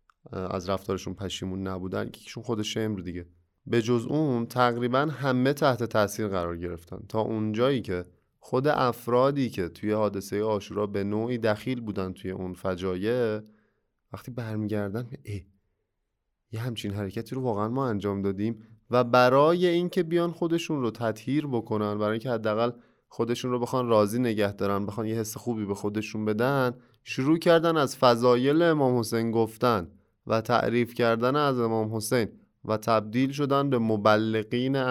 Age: 20-39